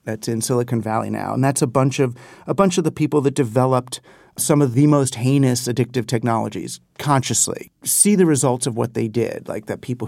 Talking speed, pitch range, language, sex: 210 wpm, 130-165 Hz, English, male